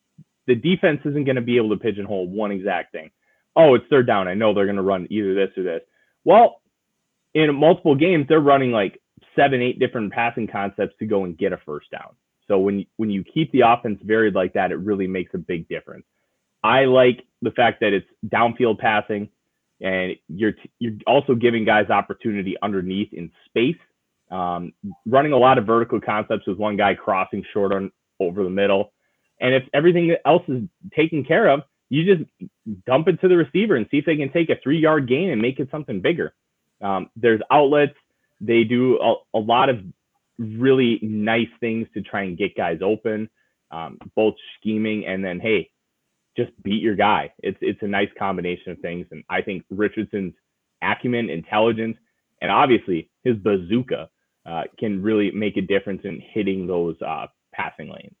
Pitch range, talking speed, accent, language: 100-135 Hz, 185 wpm, American, English